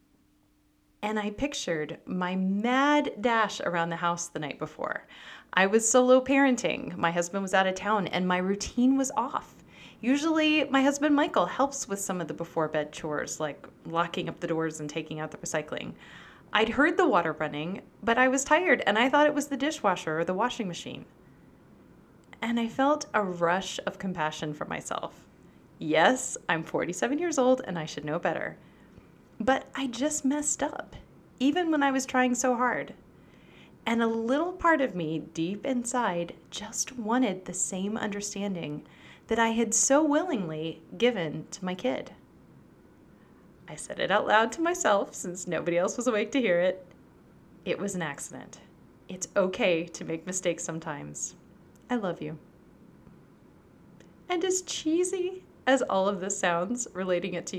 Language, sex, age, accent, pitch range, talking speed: English, female, 30-49, American, 170-265 Hz, 170 wpm